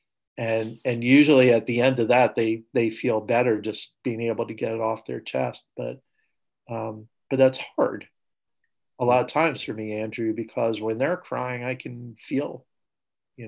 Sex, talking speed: male, 185 wpm